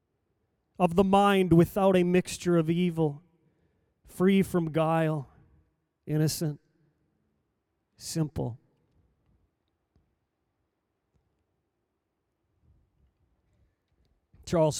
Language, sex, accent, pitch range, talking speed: English, male, American, 150-195 Hz, 55 wpm